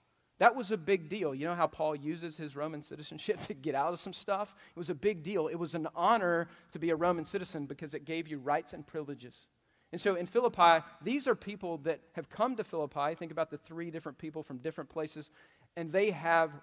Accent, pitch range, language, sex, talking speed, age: American, 155-190 Hz, English, male, 230 wpm, 40-59